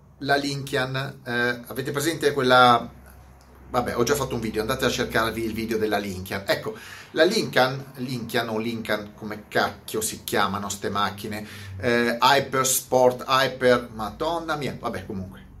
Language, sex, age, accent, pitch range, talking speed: Italian, male, 30-49, native, 110-150 Hz, 150 wpm